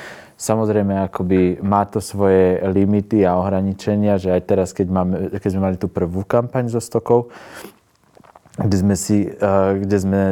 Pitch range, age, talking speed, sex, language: 95-105 Hz, 20-39, 150 wpm, male, Slovak